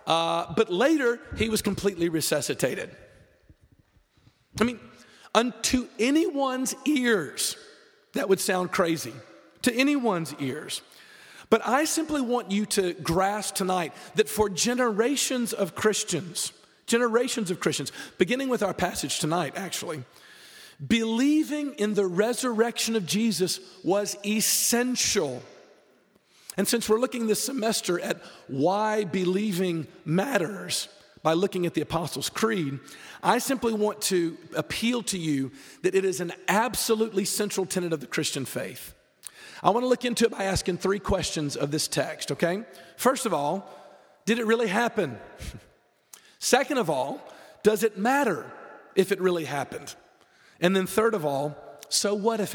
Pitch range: 170-230 Hz